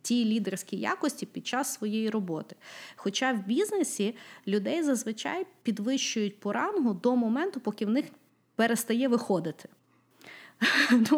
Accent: native